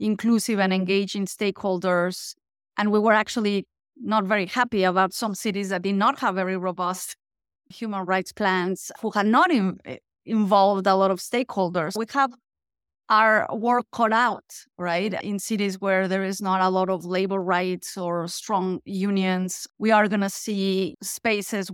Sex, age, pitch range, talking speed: female, 30-49, 185-210 Hz, 160 wpm